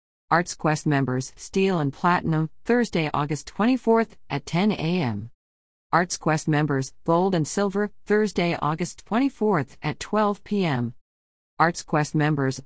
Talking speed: 115 wpm